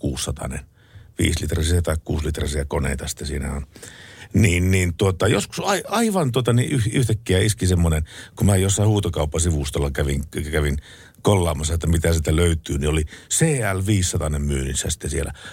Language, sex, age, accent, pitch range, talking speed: Finnish, male, 60-79, native, 80-110 Hz, 135 wpm